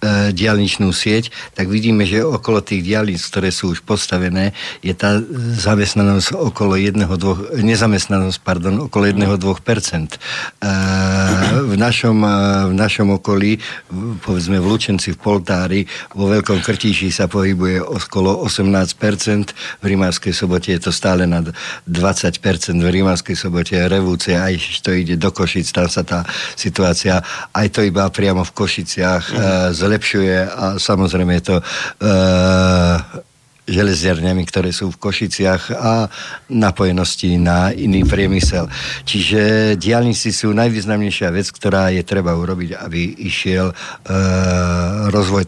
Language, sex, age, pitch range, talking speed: Slovak, male, 50-69, 90-105 Hz, 125 wpm